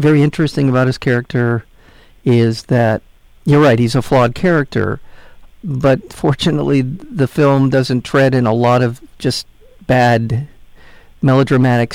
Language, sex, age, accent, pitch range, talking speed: English, male, 50-69, American, 115-140 Hz, 130 wpm